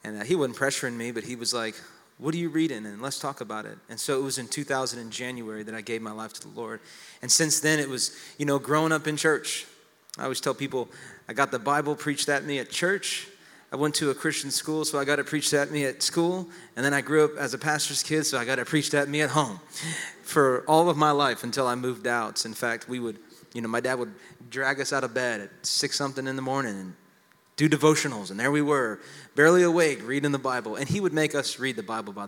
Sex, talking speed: male, 260 wpm